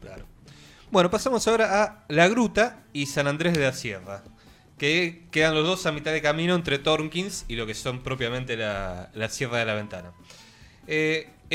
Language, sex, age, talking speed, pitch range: Spanish, male, 20-39, 180 wpm, 115-170 Hz